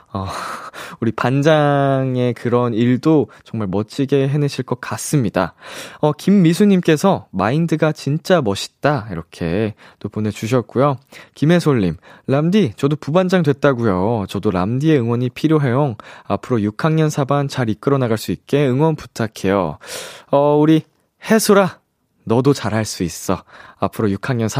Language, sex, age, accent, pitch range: Korean, male, 20-39, native, 110-155 Hz